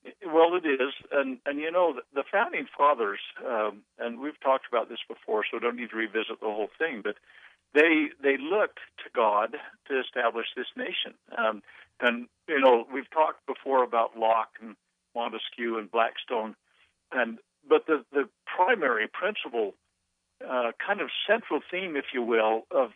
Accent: American